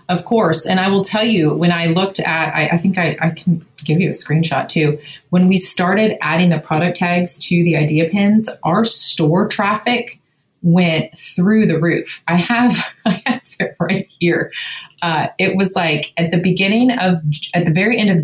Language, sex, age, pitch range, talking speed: English, female, 30-49, 155-185 Hz, 195 wpm